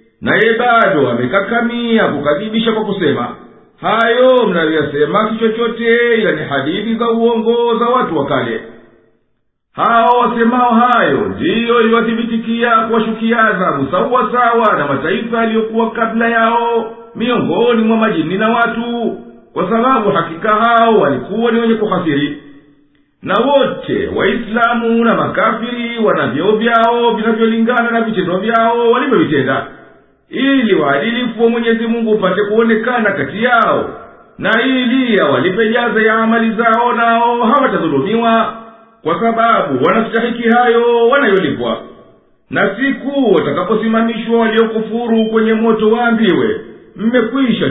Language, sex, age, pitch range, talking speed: English, male, 50-69, 215-235 Hz, 125 wpm